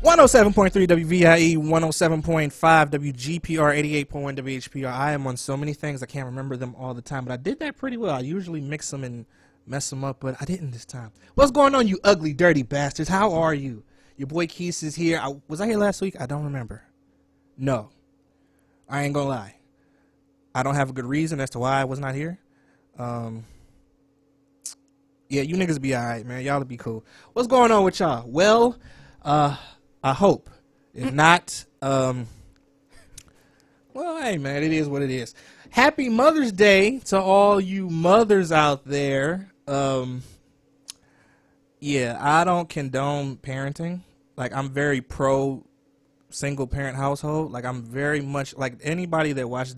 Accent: American